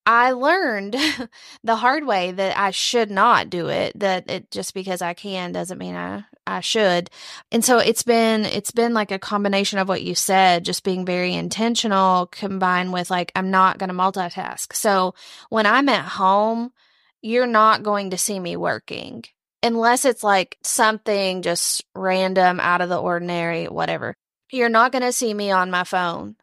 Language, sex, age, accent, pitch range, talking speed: English, female, 20-39, American, 180-220 Hz, 180 wpm